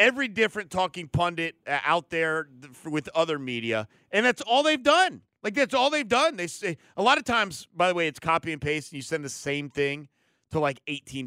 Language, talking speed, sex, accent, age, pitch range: English, 220 wpm, male, American, 30-49, 145-205 Hz